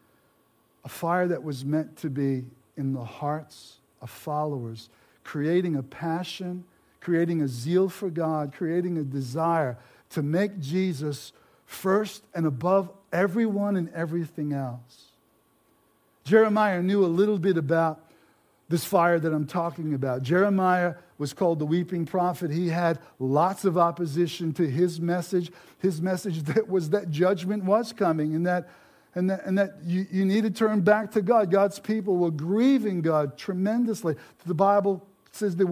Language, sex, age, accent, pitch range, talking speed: English, male, 50-69, American, 155-195 Hz, 150 wpm